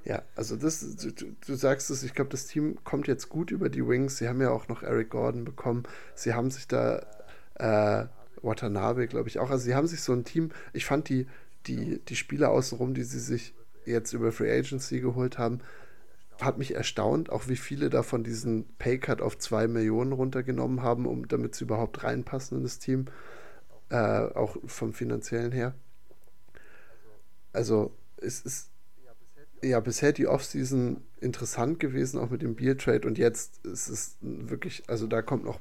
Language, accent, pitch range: German, German, 115-135 Hz